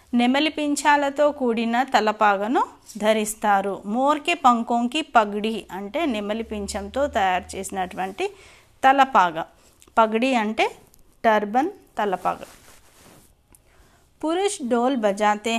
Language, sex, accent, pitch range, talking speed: Hindi, female, native, 210-300 Hz, 75 wpm